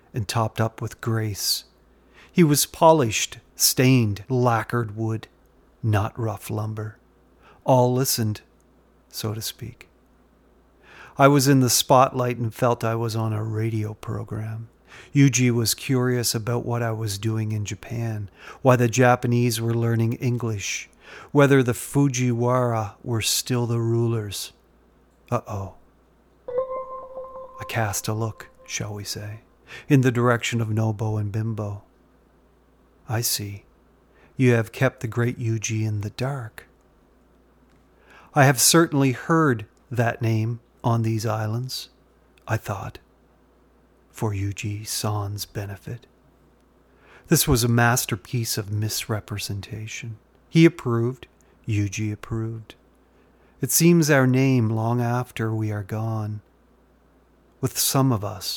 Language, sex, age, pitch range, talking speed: English, male, 40-59, 110-125 Hz, 120 wpm